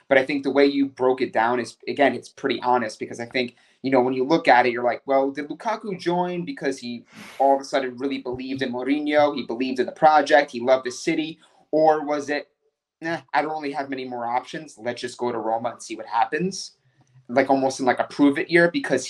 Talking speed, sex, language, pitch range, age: 240 wpm, male, English, 125-145 Hz, 30-49